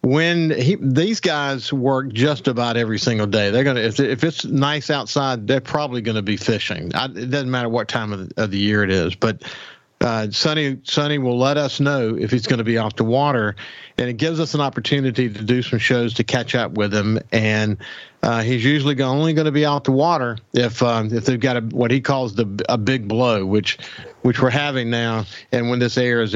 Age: 50-69